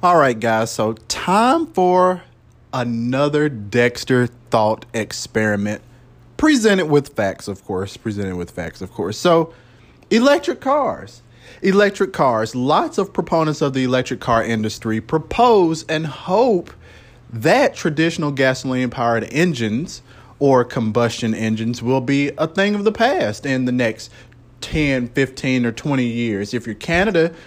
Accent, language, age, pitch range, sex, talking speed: American, English, 30-49, 120-170 Hz, male, 135 wpm